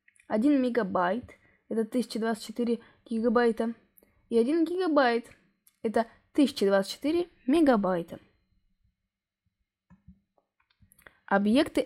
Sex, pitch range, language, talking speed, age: female, 190-255 Hz, Russian, 60 wpm, 20-39